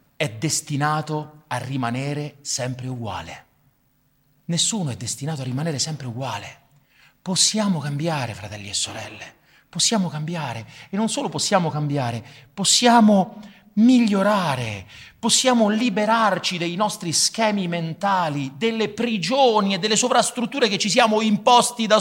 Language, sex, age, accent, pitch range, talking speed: Italian, male, 40-59, native, 145-215 Hz, 115 wpm